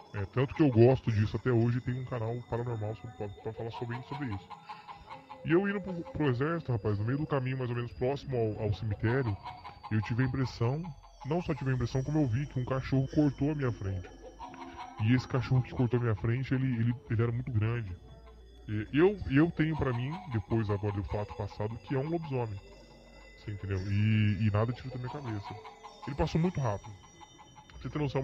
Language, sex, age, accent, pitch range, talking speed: Portuguese, female, 10-29, Brazilian, 110-135 Hz, 215 wpm